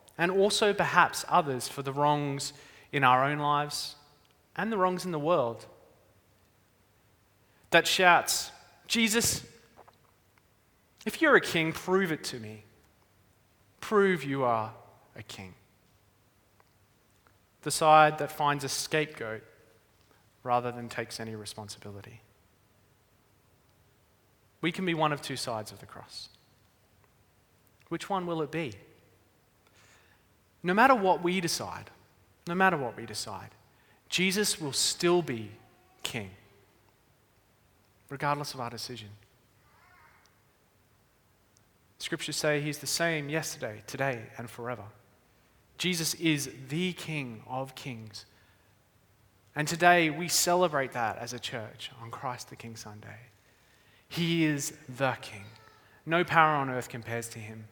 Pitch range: 105-150 Hz